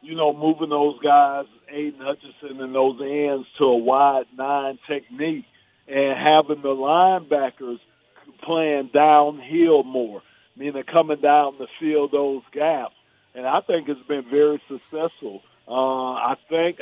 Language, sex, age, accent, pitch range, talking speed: English, male, 50-69, American, 140-155 Hz, 145 wpm